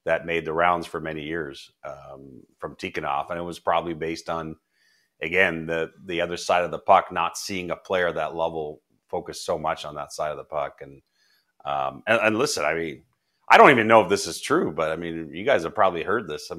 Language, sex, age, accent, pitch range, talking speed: English, male, 30-49, American, 80-90 Hz, 230 wpm